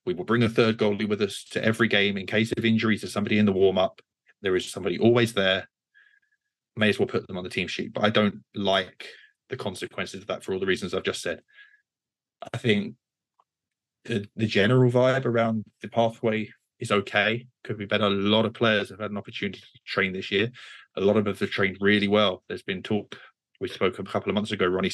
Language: English